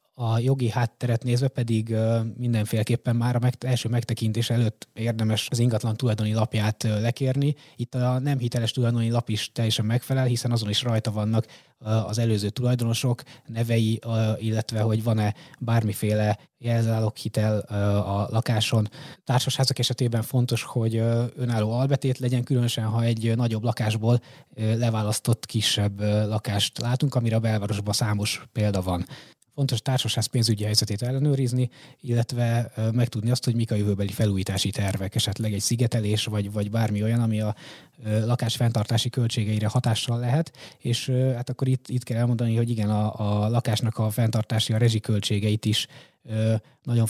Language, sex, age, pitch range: Hungarian, male, 20-39, 110-125 Hz